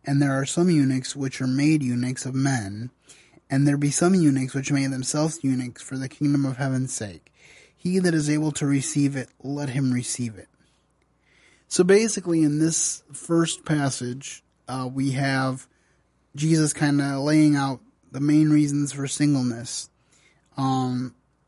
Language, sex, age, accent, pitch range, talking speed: English, male, 20-39, American, 130-150 Hz, 160 wpm